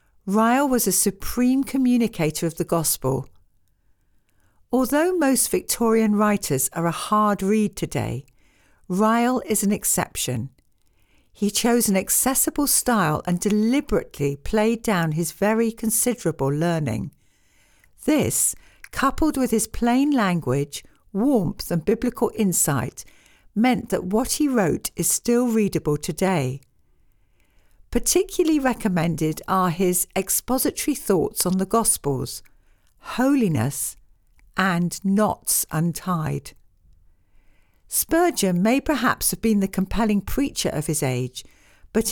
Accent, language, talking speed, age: British, English, 110 wpm, 60-79